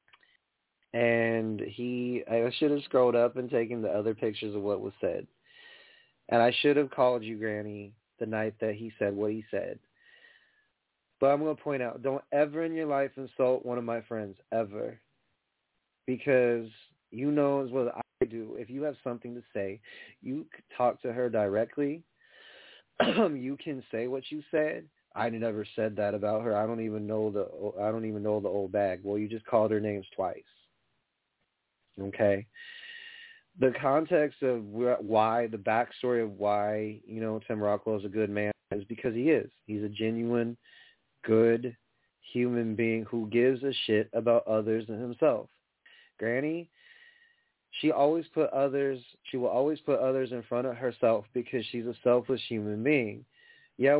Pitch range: 110-135 Hz